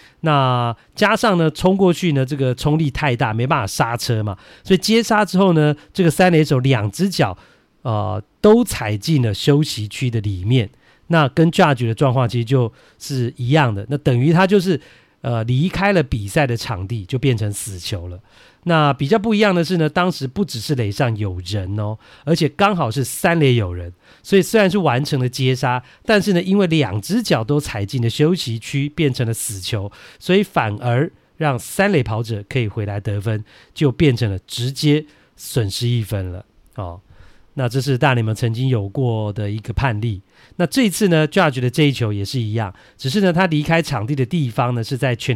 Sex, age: male, 40-59